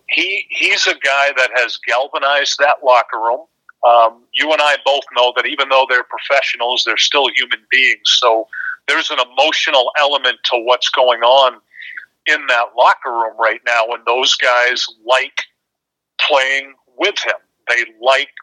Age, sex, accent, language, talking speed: 40-59, male, American, English, 160 wpm